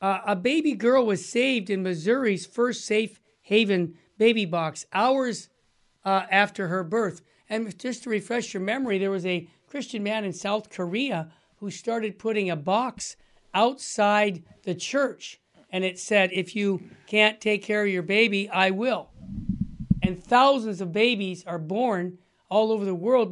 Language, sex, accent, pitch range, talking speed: English, male, American, 180-220 Hz, 160 wpm